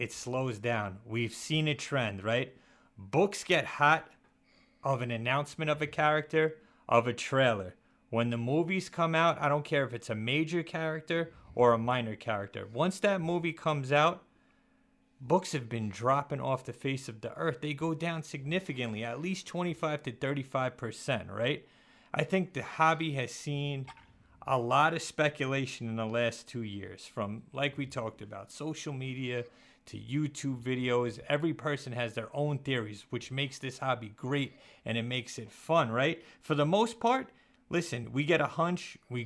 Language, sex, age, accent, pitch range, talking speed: English, male, 30-49, American, 120-165 Hz, 175 wpm